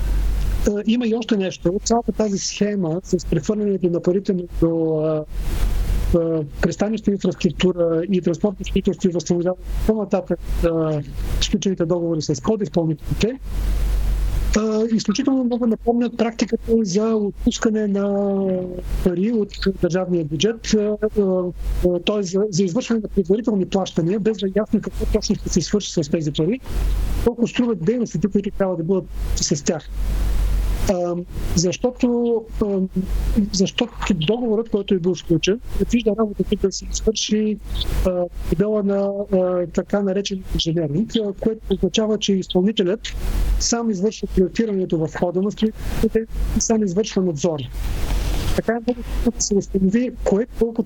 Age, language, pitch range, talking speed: 50-69, Bulgarian, 175-215 Hz, 125 wpm